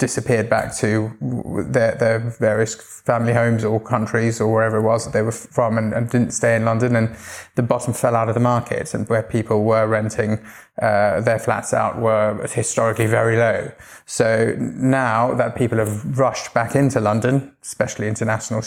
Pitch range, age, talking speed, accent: 110-120 Hz, 20-39, 180 wpm, British